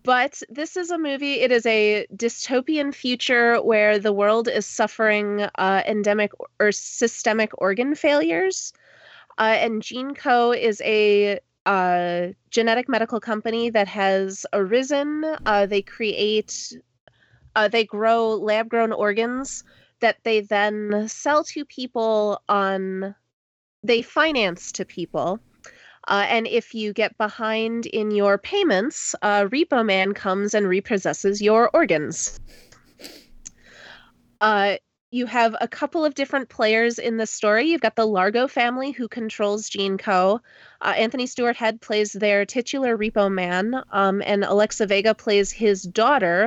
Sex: female